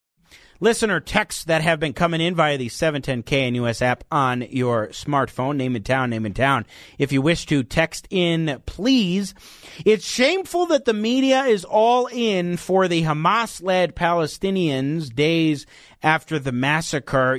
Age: 30-49